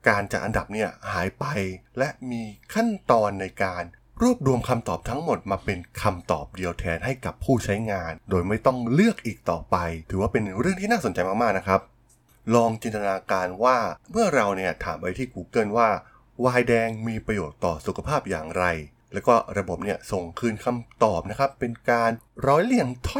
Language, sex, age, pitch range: Thai, male, 20-39, 95-125 Hz